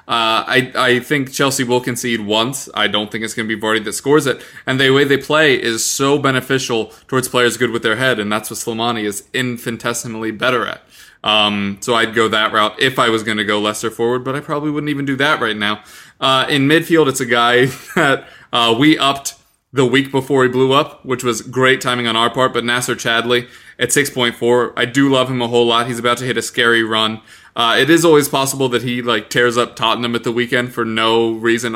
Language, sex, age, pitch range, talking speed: English, male, 20-39, 115-130 Hz, 230 wpm